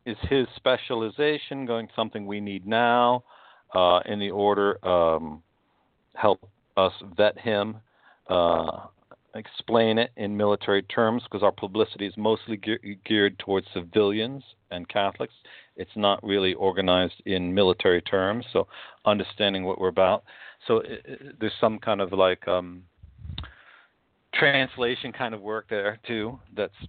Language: English